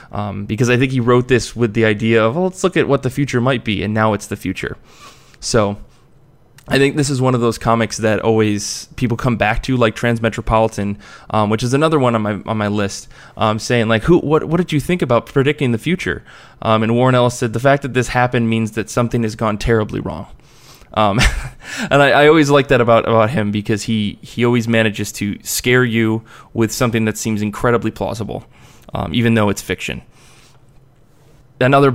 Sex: male